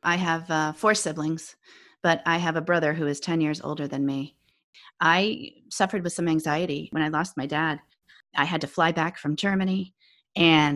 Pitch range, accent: 155-185 Hz, American